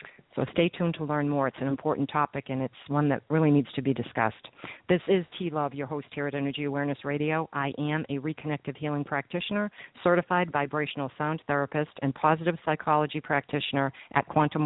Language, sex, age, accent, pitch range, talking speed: English, female, 50-69, American, 140-170 Hz, 190 wpm